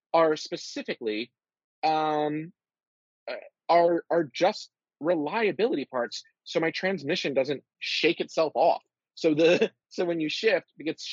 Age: 30-49